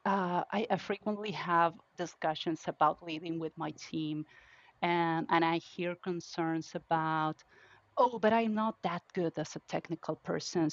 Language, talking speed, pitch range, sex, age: English, 150 wpm, 165-190 Hz, female, 30-49